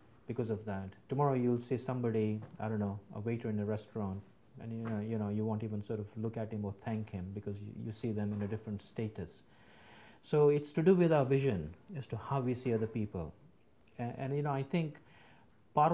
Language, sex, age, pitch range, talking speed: English, male, 50-69, 110-130 Hz, 230 wpm